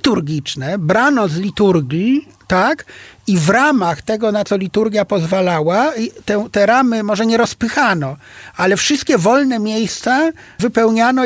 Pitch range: 165-210 Hz